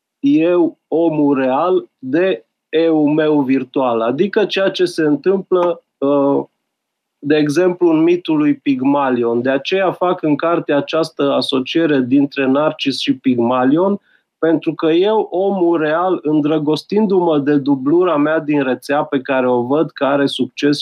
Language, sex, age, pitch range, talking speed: Romanian, male, 30-49, 145-195 Hz, 135 wpm